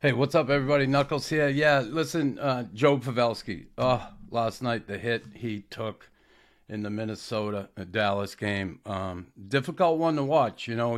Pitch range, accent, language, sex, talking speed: 110-135 Hz, American, English, male, 160 wpm